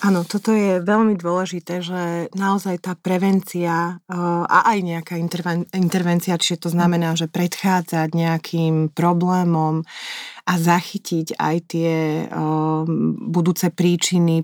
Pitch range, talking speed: 160-180 Hz, 110 wpm